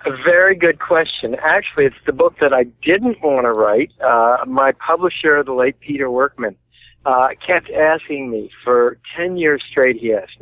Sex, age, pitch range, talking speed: male, 50-69, 125-155 Hz, 180 wpm